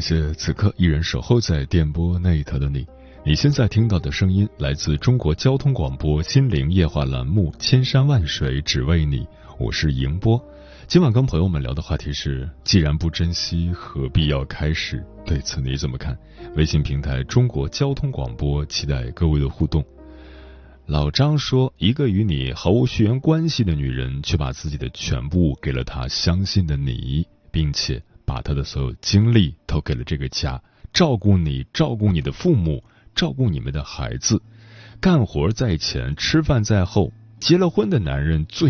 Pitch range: 70-110 Hz